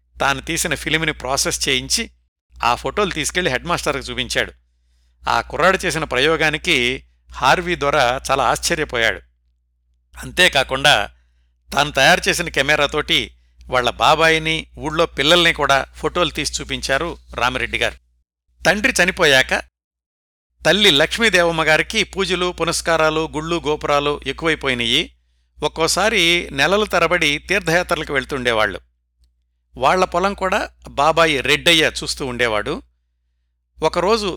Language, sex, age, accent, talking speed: Telugu, male, 60-79, native, 95 wpm